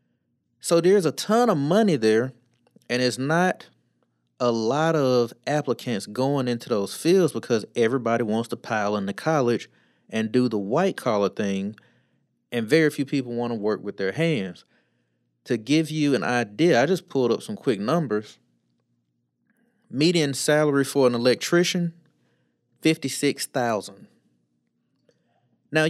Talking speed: 135 wpm